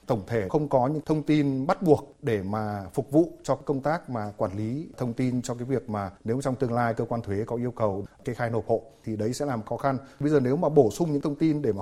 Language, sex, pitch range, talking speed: Vietnamese, male, 110-140 Hz, 285 wpm